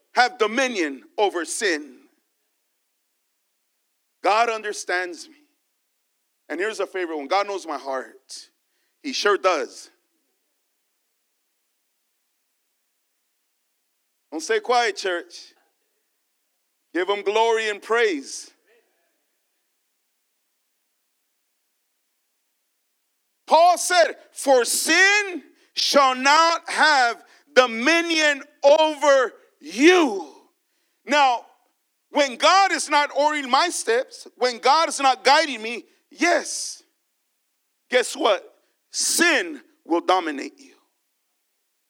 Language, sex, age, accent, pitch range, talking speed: English, male, 40-59, American, 265-350 Hz, 85 wpm